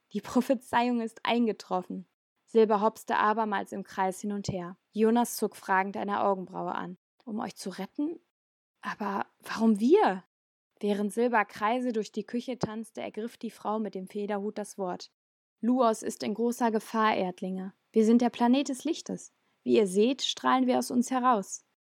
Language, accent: German, German